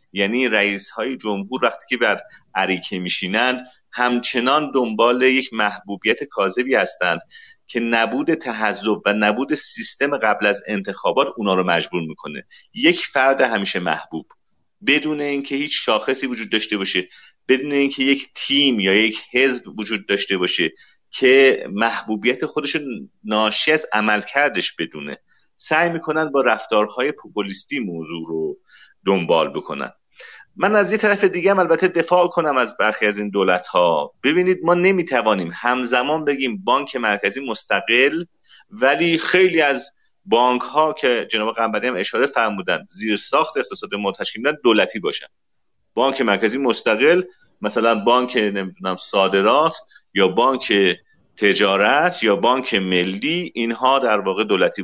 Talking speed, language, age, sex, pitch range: 135 wpm, Persian, 40-59, male, 105-155 Hz